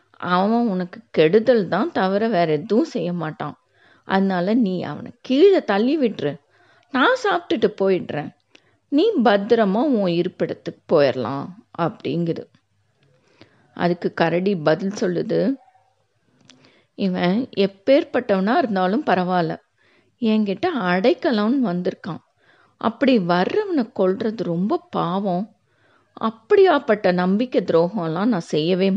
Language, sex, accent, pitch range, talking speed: Tamil, female, native, 180-260 Hz, 95 wpm